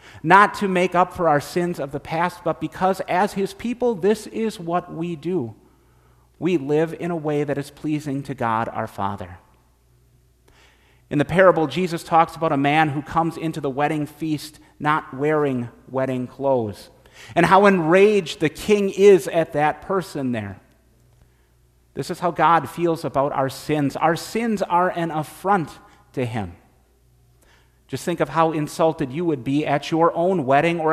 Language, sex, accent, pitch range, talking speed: English, male, American, 125-170 Hz, 170 wpm